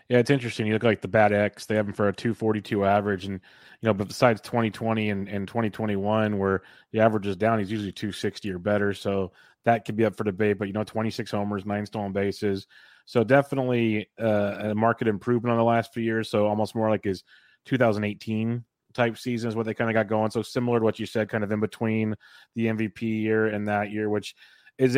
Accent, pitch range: American, 105-125 Hz